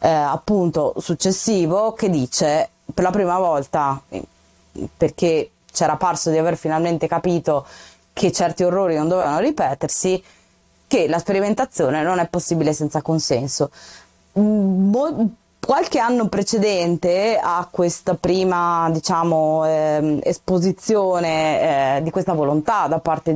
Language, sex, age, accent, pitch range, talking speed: Italian, female, 20-39, native, 160-200 Hz, 115 wpm